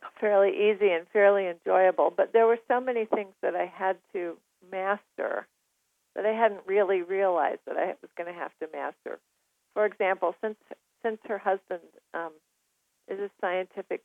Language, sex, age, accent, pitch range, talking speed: English, female, 50-69, American, 170-200 Hz, 165 wpm